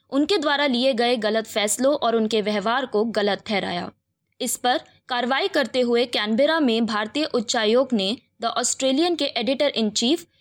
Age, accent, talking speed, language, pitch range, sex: 20-39, native, 160 wpm, Hindi, 225-285 Hz, female